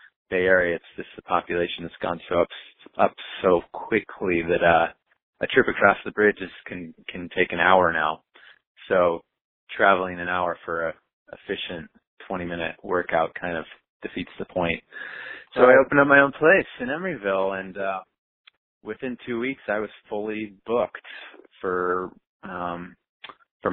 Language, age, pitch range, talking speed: English, 30-49, 90-115 Hz, 160 wpm